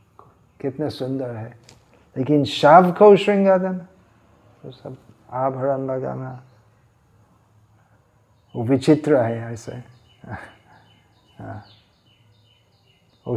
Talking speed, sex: 70 wpm, male